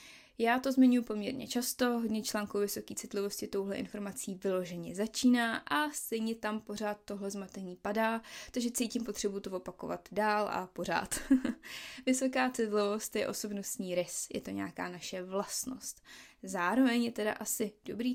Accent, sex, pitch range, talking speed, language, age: native, female, 205-250 Hz, 140 wpm, Czech, 20-39